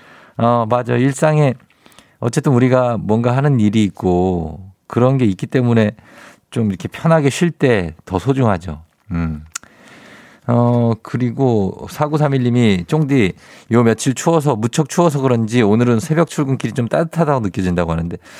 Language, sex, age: Korean, male, 50-69